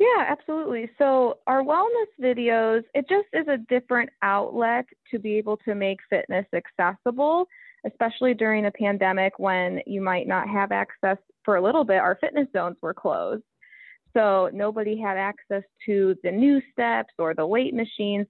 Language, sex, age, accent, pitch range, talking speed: English, female, 20-39, American, 190-235 Hz, 165 wpm